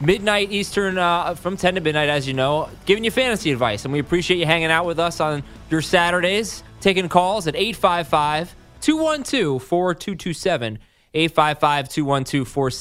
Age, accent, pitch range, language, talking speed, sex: 20-39, American, 130-190 Hz, English, 135 wpm, male